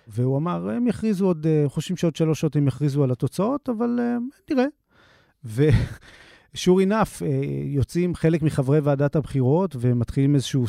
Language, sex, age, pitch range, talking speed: Hebrew, male, 30-49, 125-165 Hz, 130 wpm